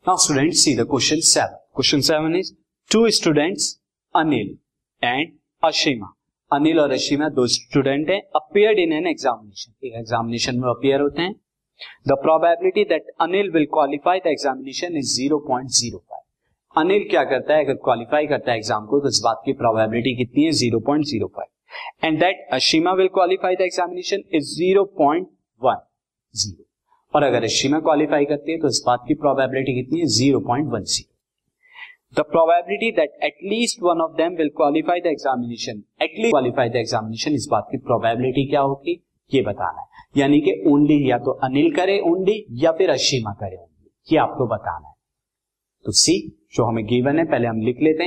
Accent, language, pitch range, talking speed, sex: native, Hindi, 125-170 Hz, 165 wpm, male